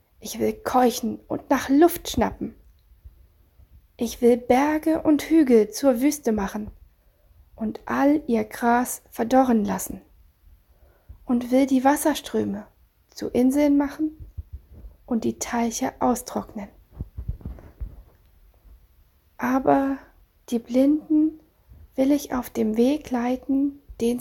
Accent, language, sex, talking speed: German, German, female, 105 wpm